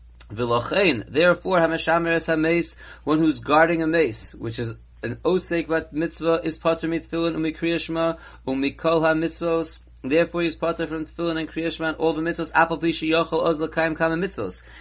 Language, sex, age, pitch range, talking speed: English, male, 30-49, 140-175 Hz, 155 wpm